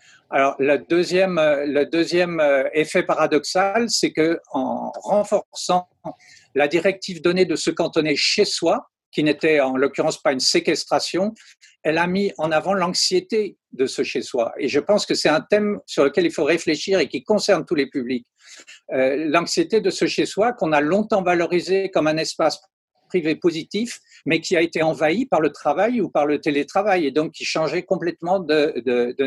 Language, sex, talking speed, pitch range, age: French, male, 180 wpm, 155-195 Hz, 60-79